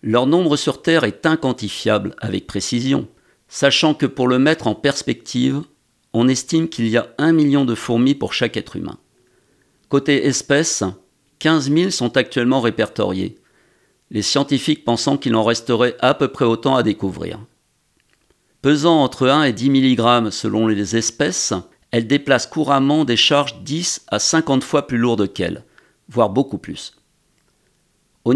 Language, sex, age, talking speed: French, male, 50-69, 150 wpm